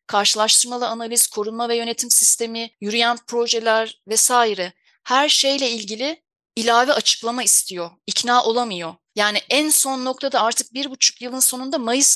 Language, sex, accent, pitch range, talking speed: Turkish, female, native, 210-260 Hz, 135 wpm